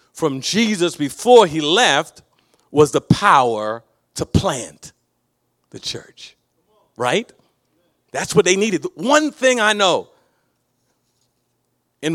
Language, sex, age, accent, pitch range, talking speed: English, male, 40-59, American, 190-290 Hz, 110 wpm